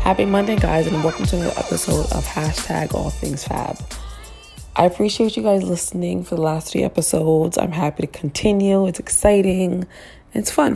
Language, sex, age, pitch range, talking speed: English, female, 20-39, 145-185 Hz, 175 wpm